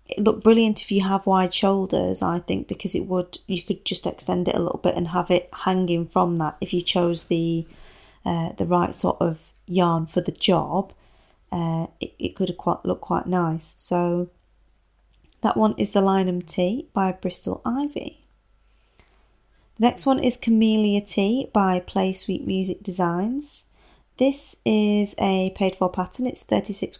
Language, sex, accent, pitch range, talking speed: English, female, British, 180-225 Hz, 170 wpm